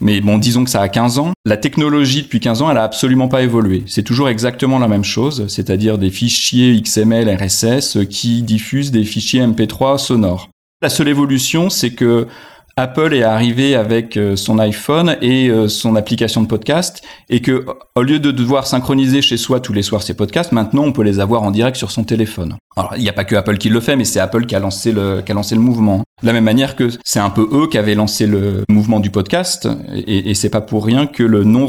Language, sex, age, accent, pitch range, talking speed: French, male, 30-49, French, 105-130 Hz, 230 wpm